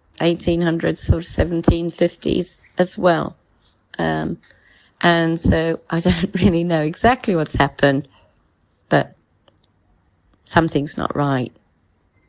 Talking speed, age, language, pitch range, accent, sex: 100 wpm, 30-49, English, 135-175 Hz, British, female